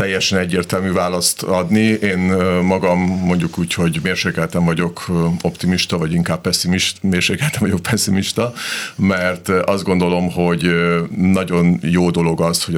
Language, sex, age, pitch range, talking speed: Hungarian, male, 50-69, 80-95 Hz, 125 wpm